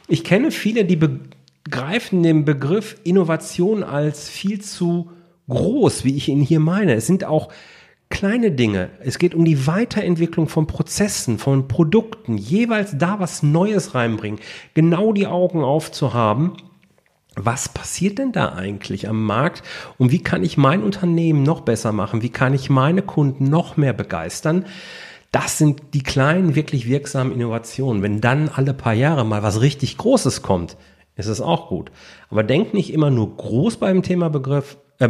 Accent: German